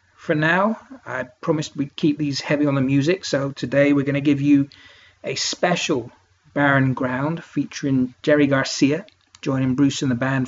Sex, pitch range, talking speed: male, 130-155 Hz, 170 wpm